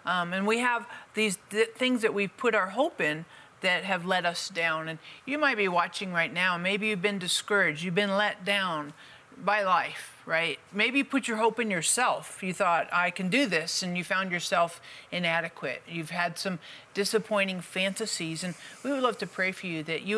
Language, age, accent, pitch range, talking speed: English, 40-59, American, 175-220 Hz, 200 wpm